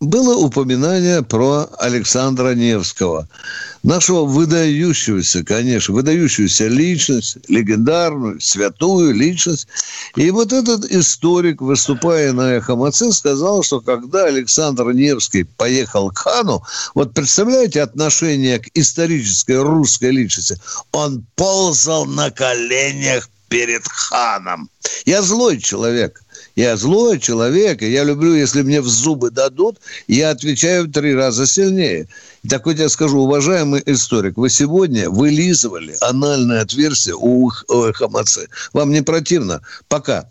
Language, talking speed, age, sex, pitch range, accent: Russian, 115 wpm, 60-79, male, 120-165 Hz, native